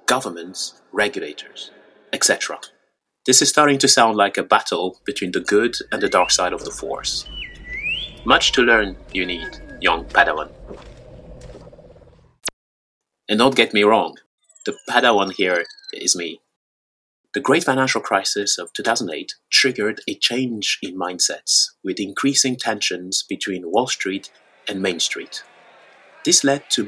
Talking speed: 135 wpm